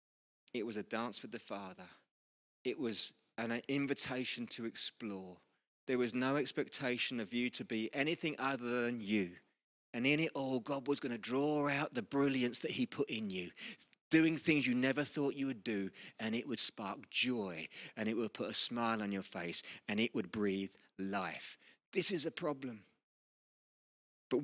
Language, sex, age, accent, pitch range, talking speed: English, male, 30-49, British, 120-190 Hz, 180 wpm